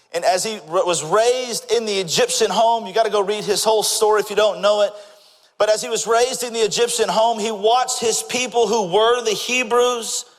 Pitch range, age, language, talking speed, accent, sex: 220-285 Hz, 40-59, English, 225 wpm, American, male